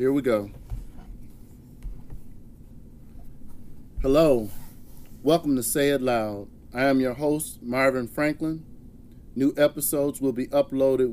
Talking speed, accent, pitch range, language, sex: 110 wpm, American, 125-155 Hz, English, male